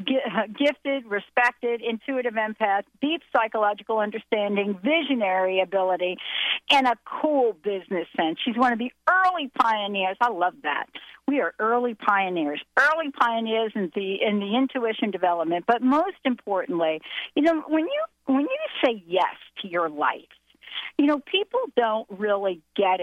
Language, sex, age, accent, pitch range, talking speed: English, female, 50-69, American, 195-260 Hz, 145 wpm